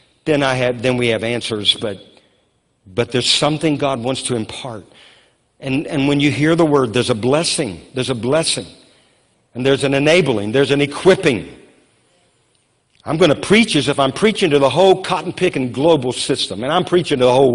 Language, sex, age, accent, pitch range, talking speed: English, male, 50-69, American, 140-195 Hz, 190 wpm